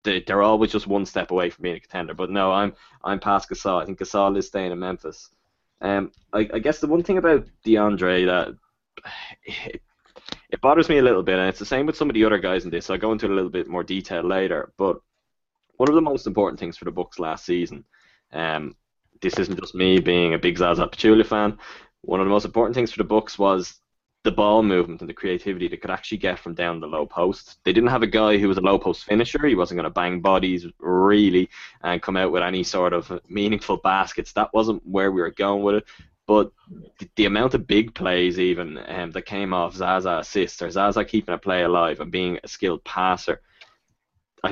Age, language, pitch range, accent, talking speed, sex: 20-39, English, 90-105 Hz, Irish, 230 wpm, male